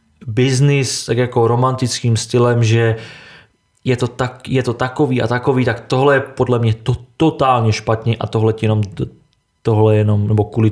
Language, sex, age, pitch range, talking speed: Czech, male, 20-39, 115-135 Hz, 175 wpm